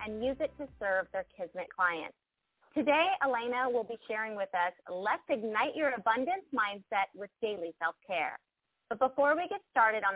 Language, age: English, 30-49